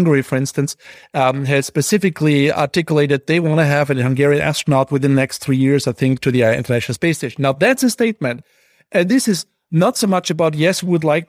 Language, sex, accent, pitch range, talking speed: English, male, German, 145-180 Hz, 215 wpm